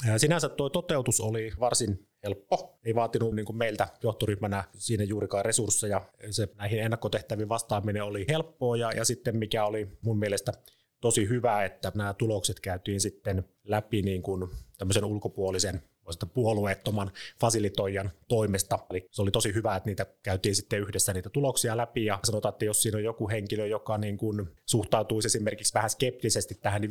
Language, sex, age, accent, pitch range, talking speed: Finnish, male, 30-49, native, 95-115 Hz, 160 wpm